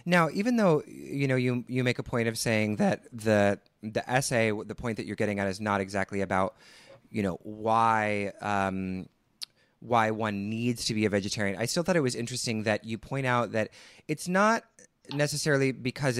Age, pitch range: 30-49, 110-140 Hz